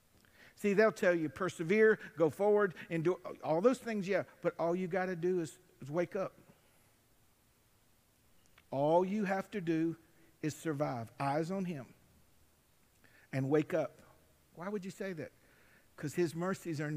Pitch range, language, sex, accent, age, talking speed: 140-195 Hz, English, male, American, 50-69, 155 wpm